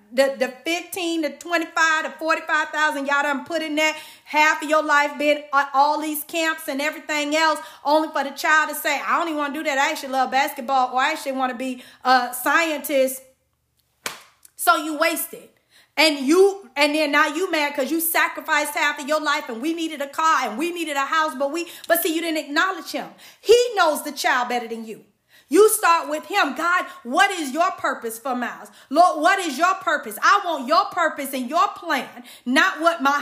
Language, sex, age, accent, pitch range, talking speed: English, female, 40-59, American, 280-340 Hz, 210 wpm